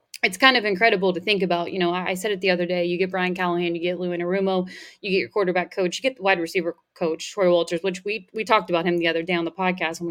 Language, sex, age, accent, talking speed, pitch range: English, female, 20-39, American, 290 wpm, 180-210 Hz